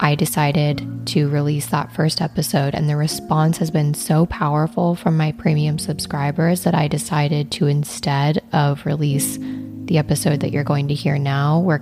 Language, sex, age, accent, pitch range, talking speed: English, female, 20-39, American, 145-170 Hz, 175 wpm